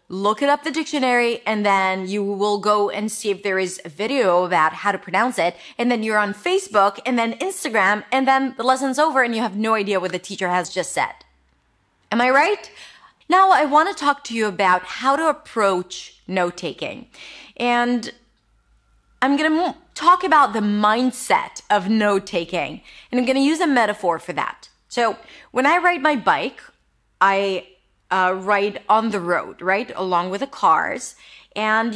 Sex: female